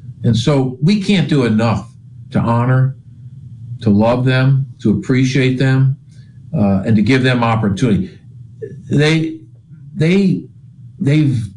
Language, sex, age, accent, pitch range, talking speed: English, male, 50-69, American, 110-135 Hz, 120 wpm